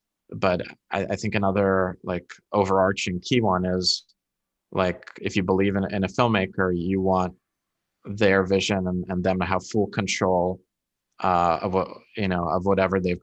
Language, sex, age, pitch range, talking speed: English, male, 20-39, 90-95 Hz, 170 wpm